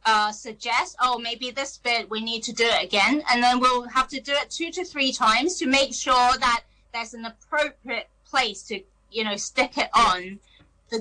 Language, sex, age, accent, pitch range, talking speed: English, female, 20-39, British, 225-275 Hz, 205 wpm